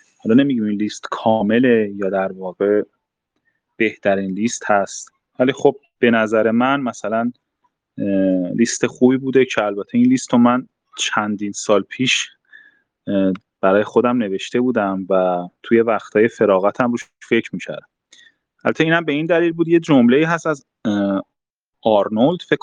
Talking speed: 135 wpm